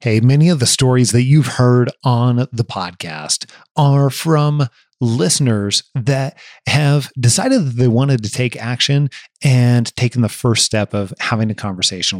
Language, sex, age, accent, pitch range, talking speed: English, male, 30-49, American, 115-145 Hz, 155 wpm